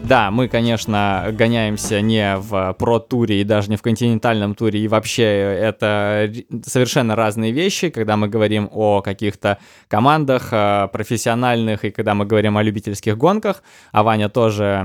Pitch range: 100-115 Hz